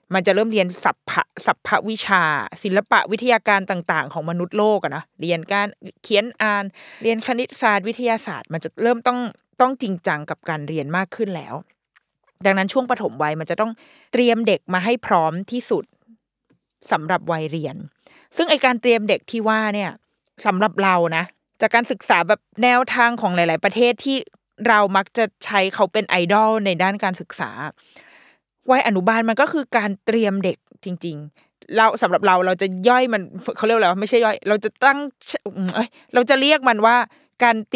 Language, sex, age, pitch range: Thai, female, 20-39, 190-245 Hz